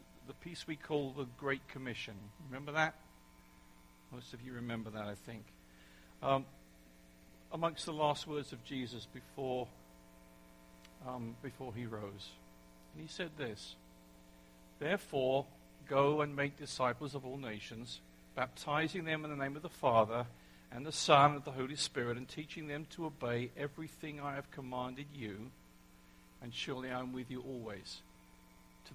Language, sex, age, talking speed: English, male, 50-69, 150 wpm